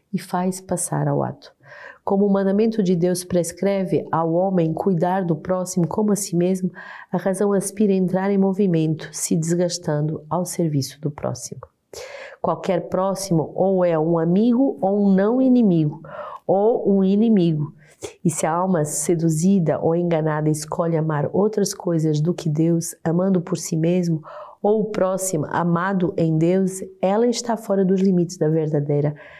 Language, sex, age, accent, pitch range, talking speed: Portuguese, female, 40-59, Brazilian, 165-200 Hz, 155 wpm